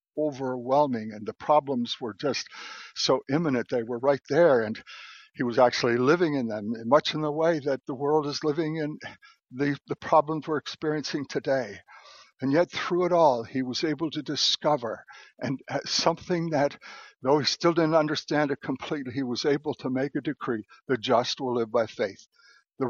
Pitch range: 130-155 Hz